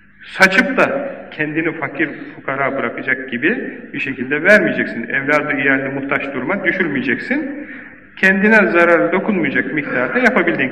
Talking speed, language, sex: 110 wpm, Turkish, male